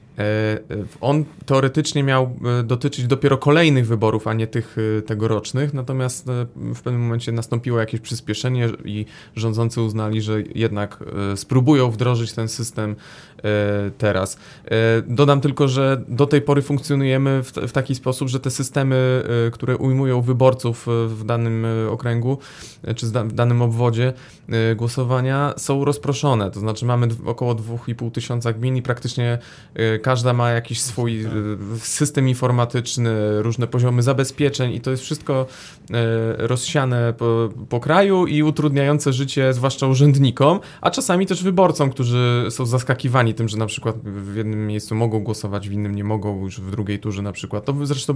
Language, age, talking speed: Polish, 20-39, 140 wpm